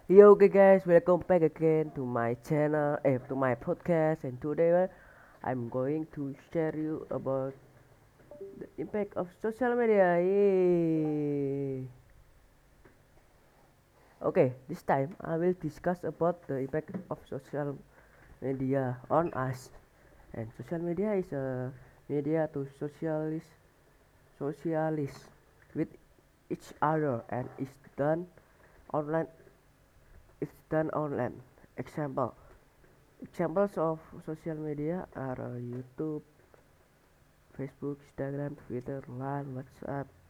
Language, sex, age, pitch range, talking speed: English, female, 30-49, 125-165 Hz, 110 wpm